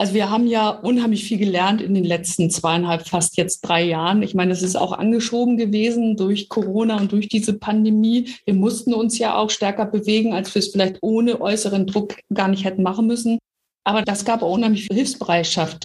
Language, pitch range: German, 185-215 Hz